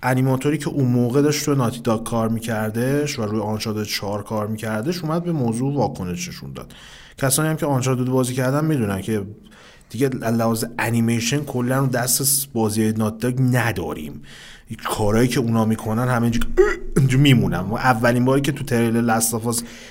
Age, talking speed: 30-49, 155 wpm